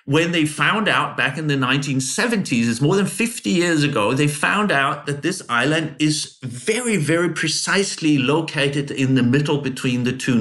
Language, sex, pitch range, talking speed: English, male, 135-180 Hz, 180 wpm